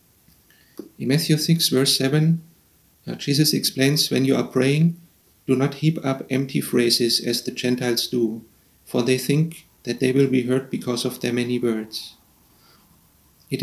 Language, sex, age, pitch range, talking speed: English, male, 40-59, 120-135 Hz, 155 wpm